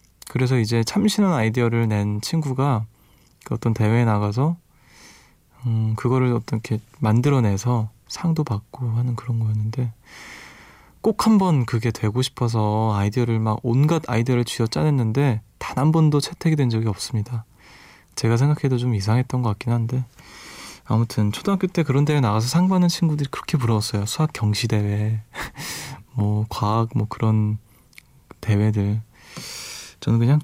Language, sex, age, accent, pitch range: Korean, male, 20-39, native, 110-140 Hz